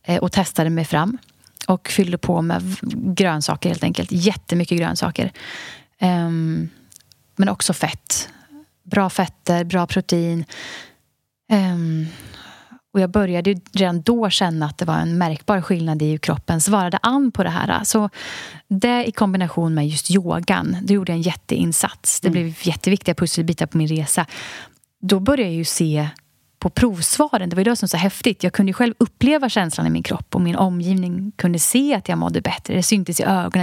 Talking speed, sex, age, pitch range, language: 175 wpm, female, 30-49, 165-205 Hz, Swedish